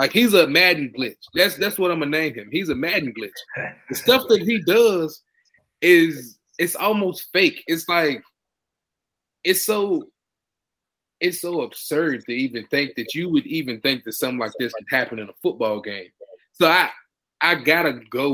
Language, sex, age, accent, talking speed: English, male, 20-39, American, 180 wpm